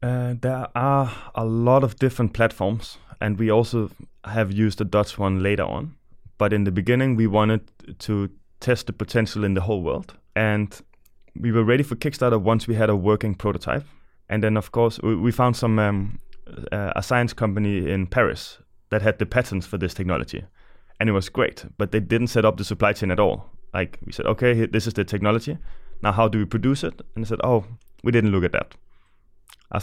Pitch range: 100-115 Hz